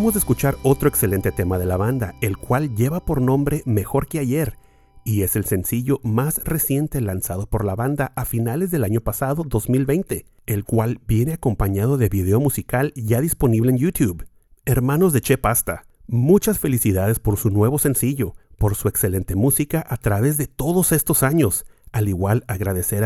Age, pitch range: 40-59, 105-145 Hz